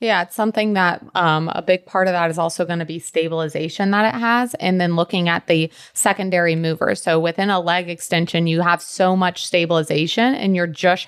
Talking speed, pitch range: 210 wpm, 160-185 Hz